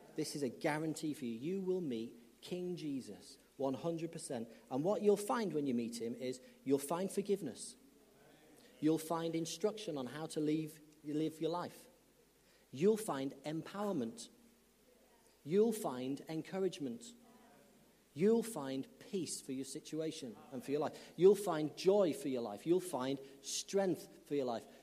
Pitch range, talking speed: 140-195 Hz, 145 wpm